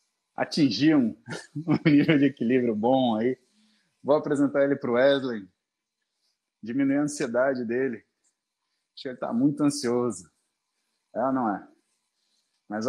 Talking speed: 130 wpm